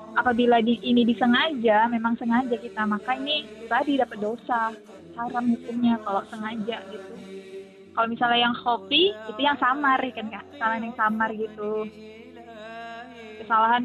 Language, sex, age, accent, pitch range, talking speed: Indonesian, female, 20-39, native, 220-260 Hz, 135 wpm